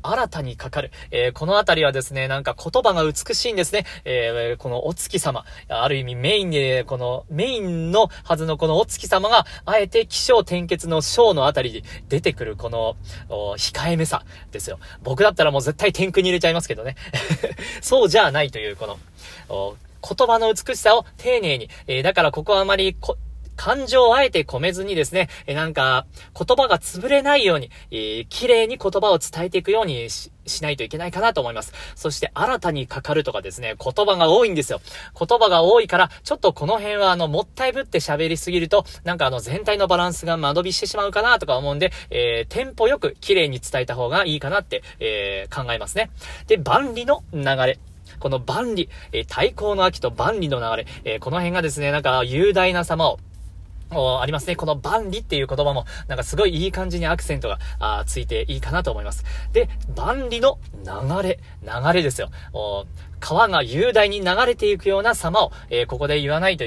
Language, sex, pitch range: Japanese, male, 135-220 Hz